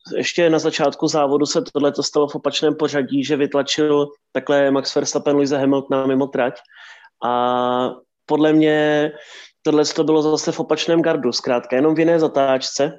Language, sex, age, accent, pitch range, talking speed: Czech, male, 20-39, native, 135-155 Hz, 155 wpm